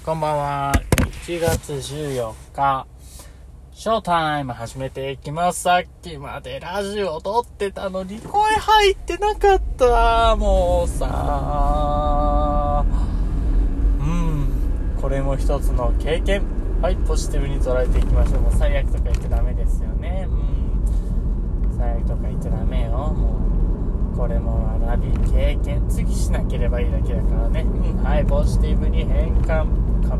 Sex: male